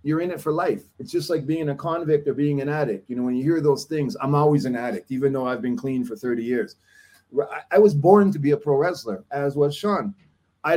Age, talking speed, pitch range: 30-49, 255 wpm, 145-185 Hz